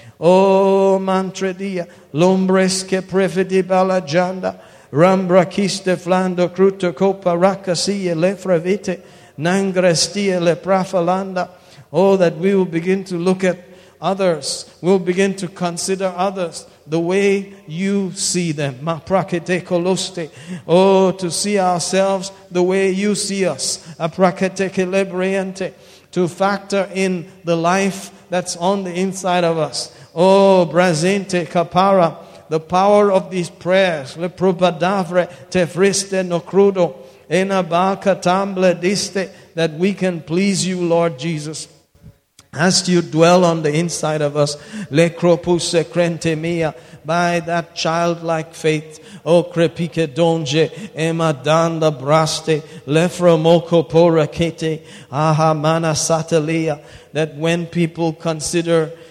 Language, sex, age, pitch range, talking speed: English, male, 50-69, 165-190 Hz, 115 wpm